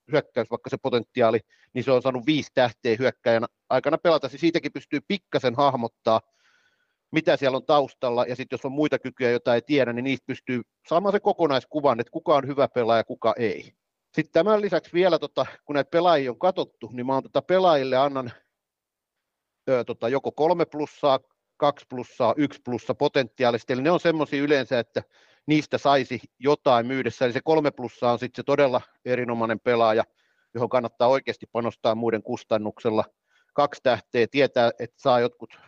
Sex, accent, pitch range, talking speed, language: male, native, 120-145 Hz, 165 wpm, Finnish